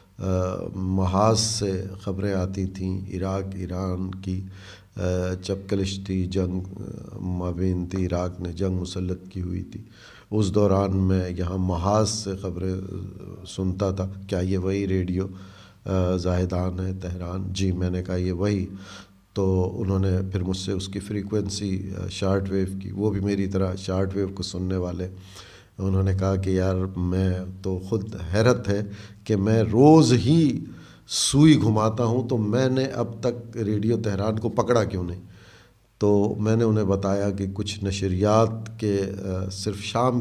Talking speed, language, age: 150 wpm, Urdu, 50-69